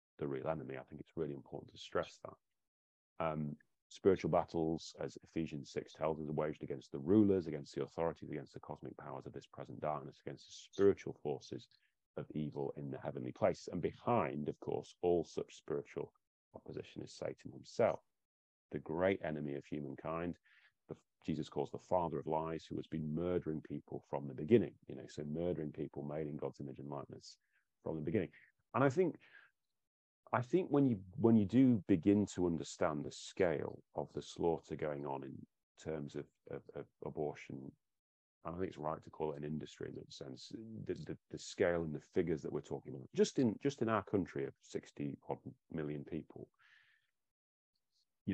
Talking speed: 185 wpm